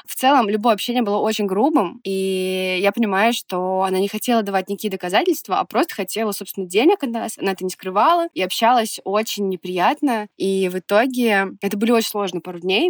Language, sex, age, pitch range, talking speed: Russian, female, 20-39, 195-245 Hz, 190 wpm